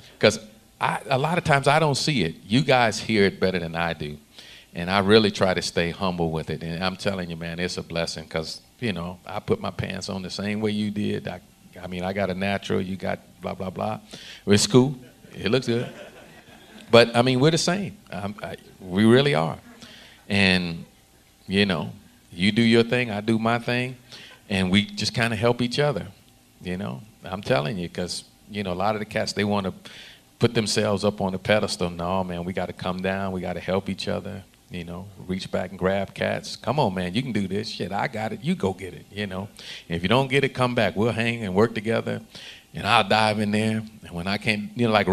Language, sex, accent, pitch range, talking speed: English, male, American, 95-115 Hz, 235 wpm